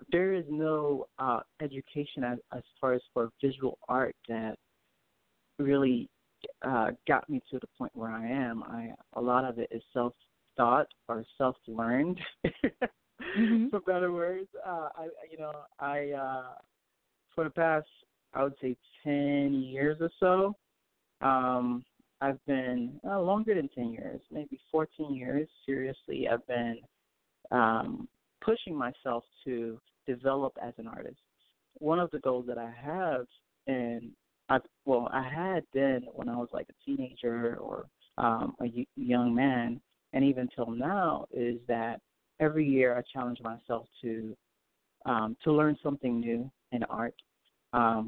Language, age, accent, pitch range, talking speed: English, 40-59, American, 120-150 Hz, 145 wpm